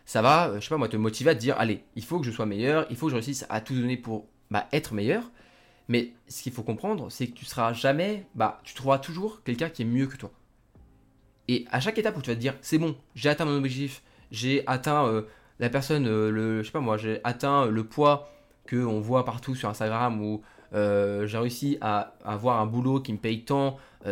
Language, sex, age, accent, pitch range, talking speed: French, male, 20-39, French, 110-145 Hz, 245 wpm